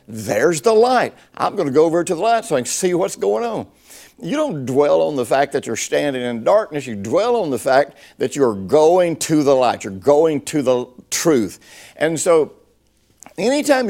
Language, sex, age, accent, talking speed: English, male, 60-79, American, 205 wpm